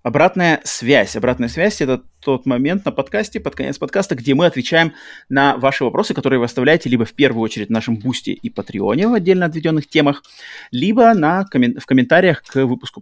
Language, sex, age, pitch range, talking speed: Russian, male, 30-49, 115-150 Hz, 195 wpm